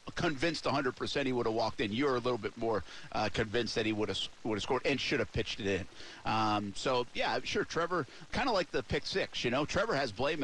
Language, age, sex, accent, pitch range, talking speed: English, 50-69, male, American, 110-140 Hz, 255 wpm